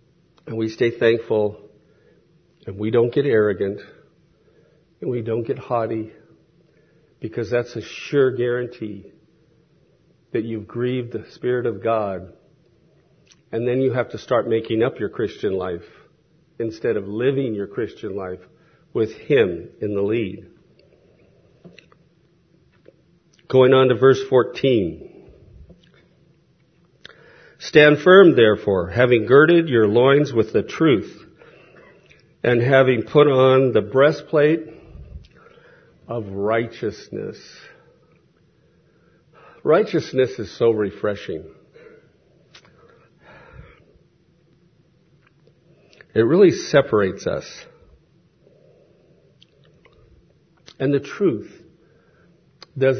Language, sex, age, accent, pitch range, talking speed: English, male, 50-69, American, 115-150 Hz, 95 wpm